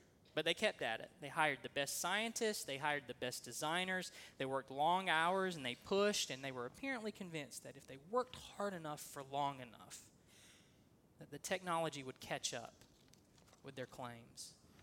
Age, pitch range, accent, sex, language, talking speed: 20-39, 135-170 Hz, American, male, English, 180 wpm